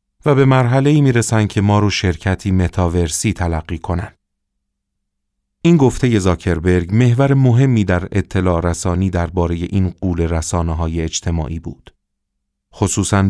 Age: 40-59